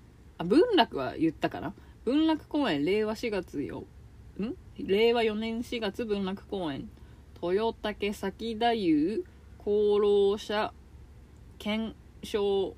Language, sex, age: Japanese, female, 20-39